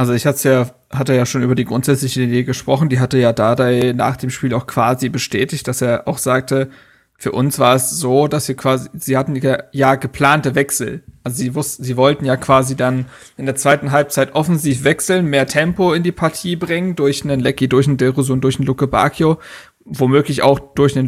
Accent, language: German, German